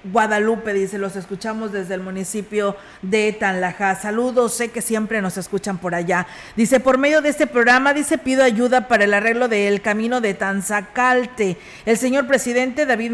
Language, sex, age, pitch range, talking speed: Spanish, female, 40-59, 200-245 Hz, 170 wpm